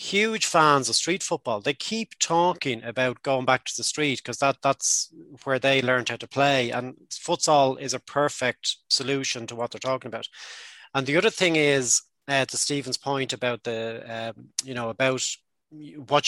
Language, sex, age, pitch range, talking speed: English, male, 30-49, 125-155 Hz, 185 wpm